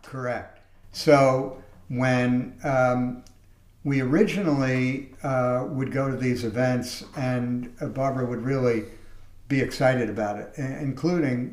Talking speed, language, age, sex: 110 wpm, English, 60-79, male